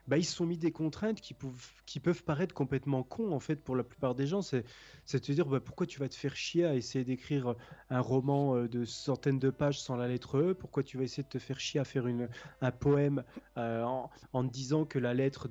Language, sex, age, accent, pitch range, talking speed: French, male, 20-39, French, 125-150 Hz, 255 wpm